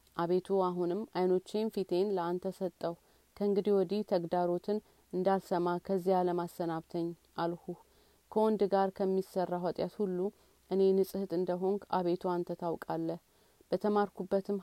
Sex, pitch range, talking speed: female, 175-195 Hz, 105 wpm